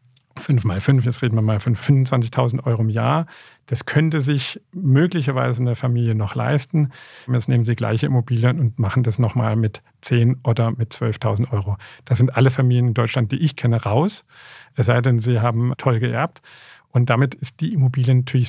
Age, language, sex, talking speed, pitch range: 50-69, German, male, 190 wpm, 120-135 Hz